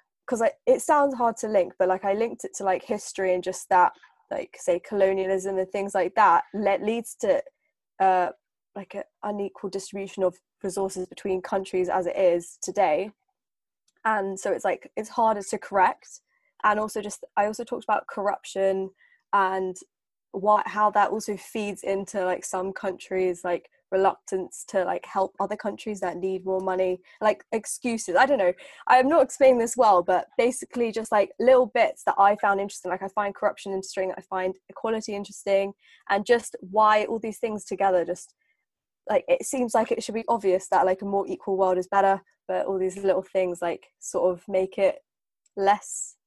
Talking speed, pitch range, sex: 185 wpm, 190-230 Hz, female